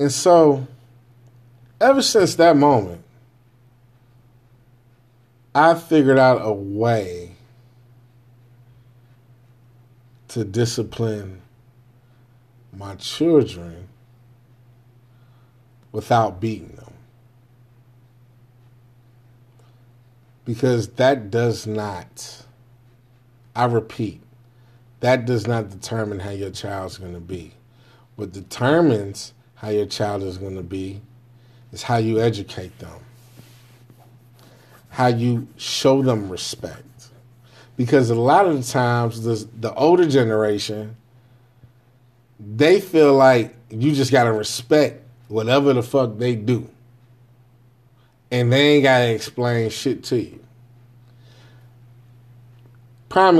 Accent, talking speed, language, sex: American, 95 wpm, English, male